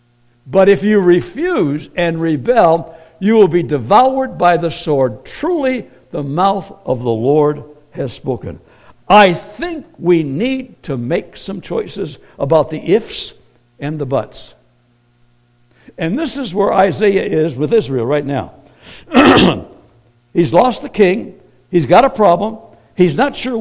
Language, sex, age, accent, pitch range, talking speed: English, male, 60-79, American, 120-195 Hz, 140 wpm